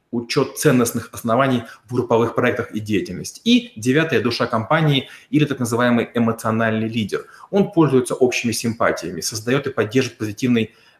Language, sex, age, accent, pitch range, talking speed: Russian, male, 30-49, native, 115-135 Hz, 140 wpm